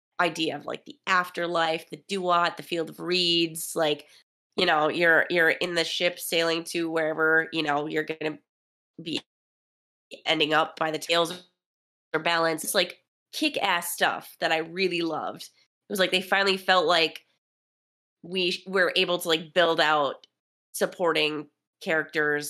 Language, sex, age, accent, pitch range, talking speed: English, female, 20-39, American, 160-195 Hz, 155 wpm